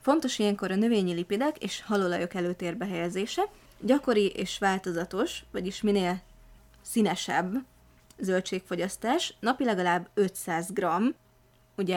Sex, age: female, 20-39